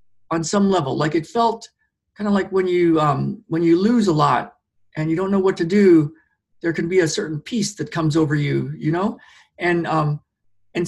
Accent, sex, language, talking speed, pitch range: American, male, English, 215 wpm, 155-200 Hz